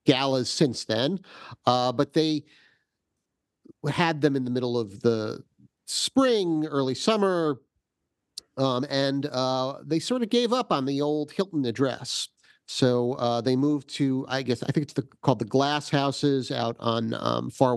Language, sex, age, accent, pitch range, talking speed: English, male, 40-59, American, 120-160 Hz, 160 wpm